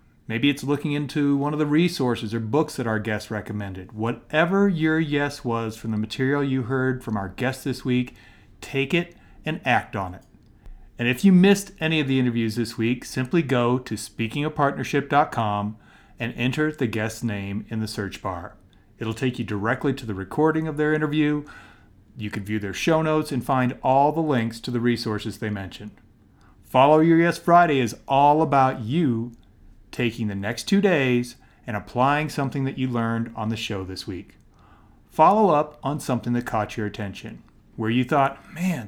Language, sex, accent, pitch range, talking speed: English, male, American, 105-145 Hz, 185 wpm